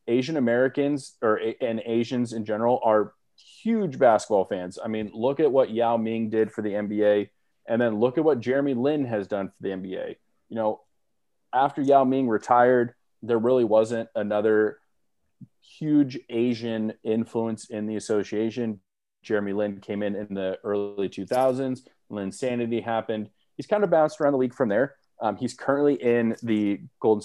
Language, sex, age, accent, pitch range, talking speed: English, male, 30-49, American, 105-120 Hz, 165 wpm